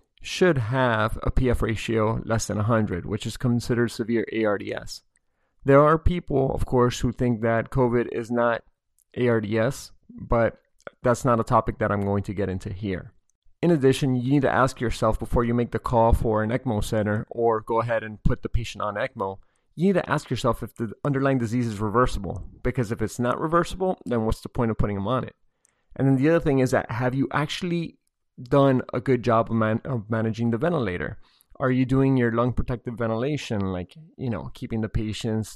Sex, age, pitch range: male, 30-49, 110-130 Hz